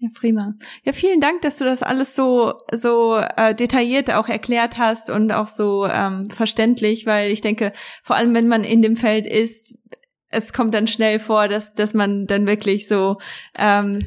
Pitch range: 210-235 Hz